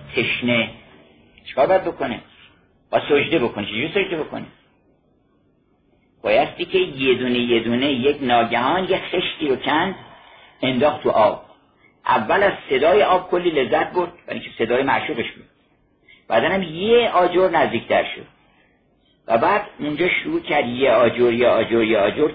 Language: Persian